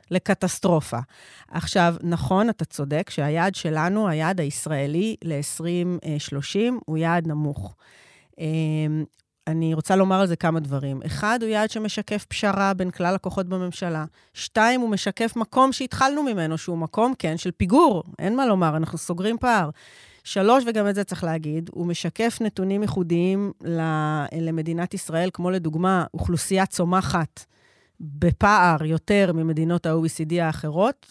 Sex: female